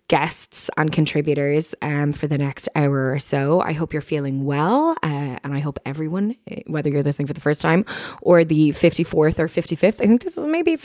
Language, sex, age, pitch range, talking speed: English, female, 20-39, 145-185 Hz, 205 wpm